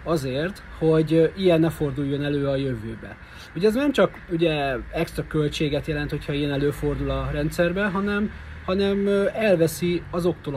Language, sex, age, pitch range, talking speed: Hungarian, male, 30-49, 140-175 Hz, 140 wpm